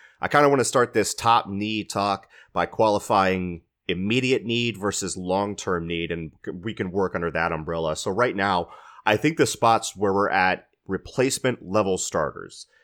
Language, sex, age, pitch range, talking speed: English, male, 30-49, 85-110 Hz, 175 wpm